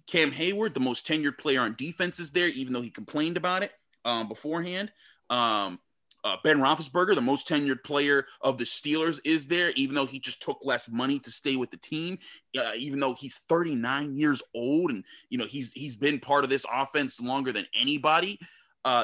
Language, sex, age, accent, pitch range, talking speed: English, male, 30-49, American, 135-205 Hz, 200 wpm